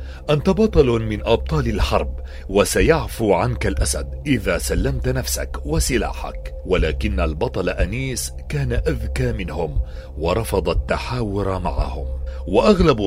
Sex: male